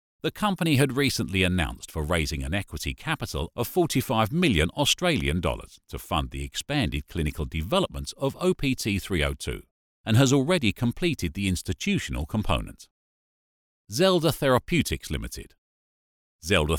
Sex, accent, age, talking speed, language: male, British, 40-59, 120 wpm, English